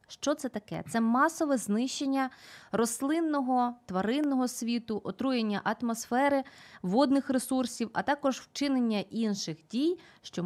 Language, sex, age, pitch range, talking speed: Ukrainian, female, 20-39, 205-270 Hz, 110 wpm